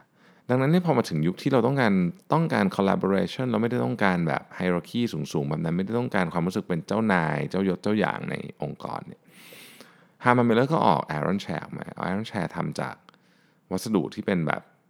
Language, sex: Thai, male